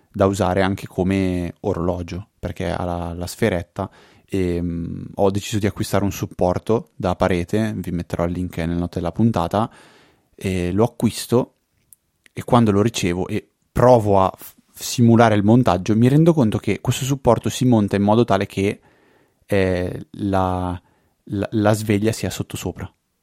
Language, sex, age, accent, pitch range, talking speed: Italian, male, 20-39, native, 90-105 Hz, 160 wpm